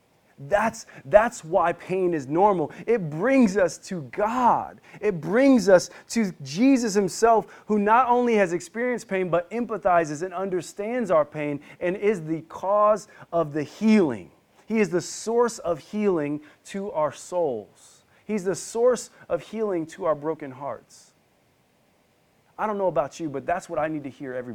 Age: 30-49